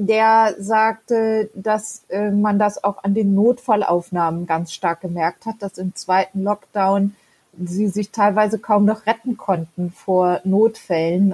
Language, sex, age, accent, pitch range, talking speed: German, female, 30-49, German, 190-215 Hz, 140 wpm